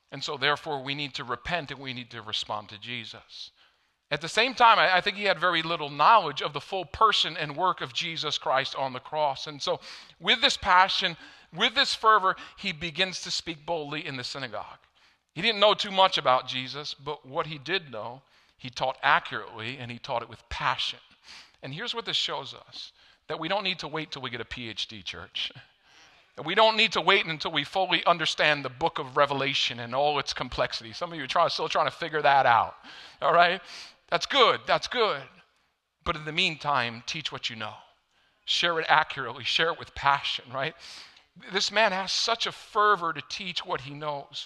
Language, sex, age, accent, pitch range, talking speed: English, male, 50-69, American, 130-180 Hz, 210 wpm